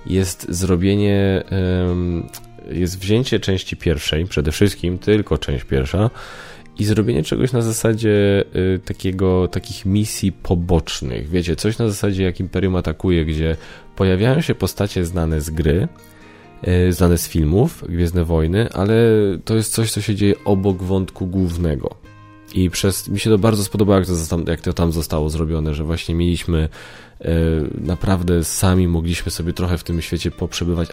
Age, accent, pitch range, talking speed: 20-39, native, 85-100 Hz, 145 wpm